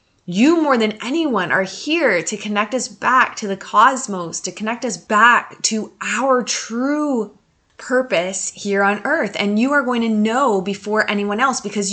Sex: female